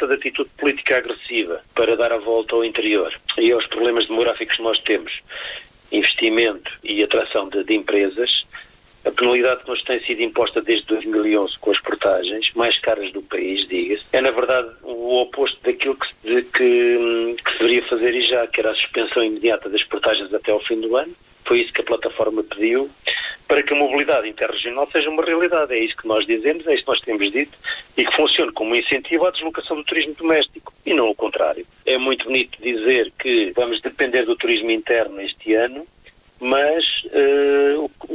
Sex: male